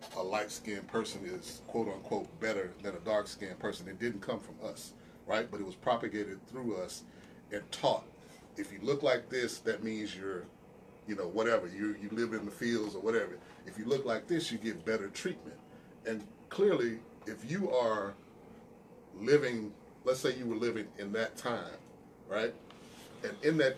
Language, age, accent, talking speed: English, 30-49, American, 180 wpm